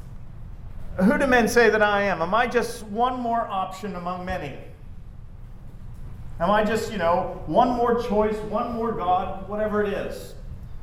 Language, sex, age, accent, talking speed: English, male, 40-59, American, 160 wpm